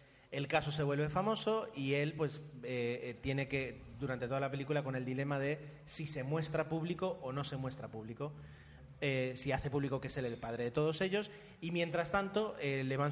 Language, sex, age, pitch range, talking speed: Spanish, male, 30-49, 130-165 Hz, 210 wpm